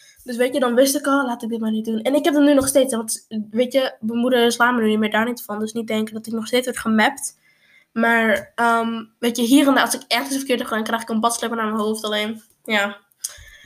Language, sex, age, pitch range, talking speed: Dutch, female, 10-29, 225-260 Hz, 270 wpm